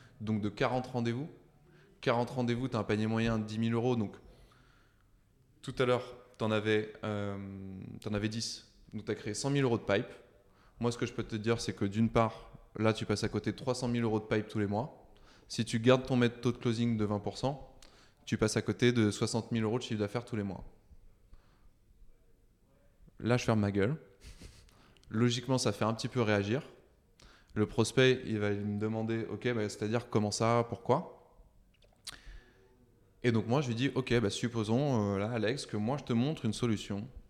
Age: 20-39